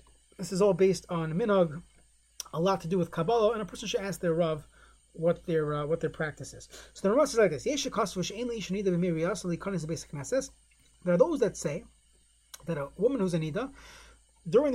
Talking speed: 175 wpm